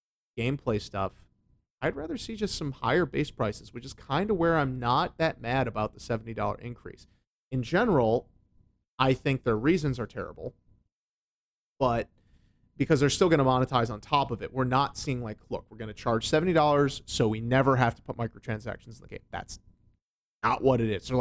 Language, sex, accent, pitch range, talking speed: English, male, American, 115-145 Hz, 190 wpm